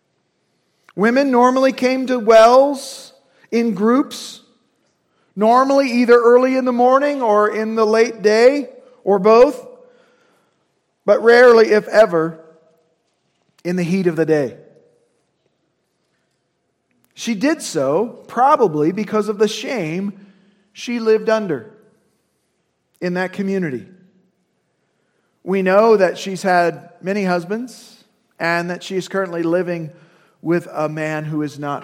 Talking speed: 120 wpm